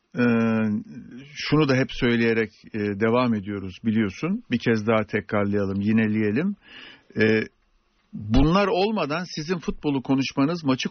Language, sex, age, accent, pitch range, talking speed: Turkish, male, 60-79, native, 120-165 Hz, 100 wpm